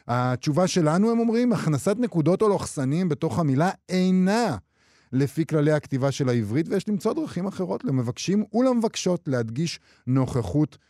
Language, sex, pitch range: Hebrew, male, 115-170 Hz